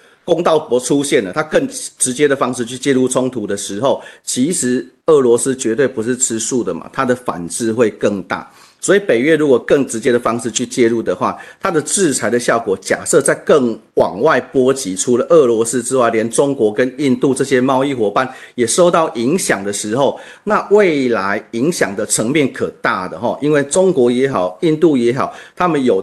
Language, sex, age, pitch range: Chinese, male, 40-59, 115-140 Hz